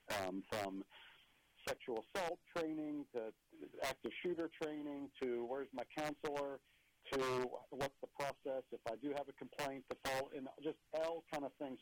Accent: American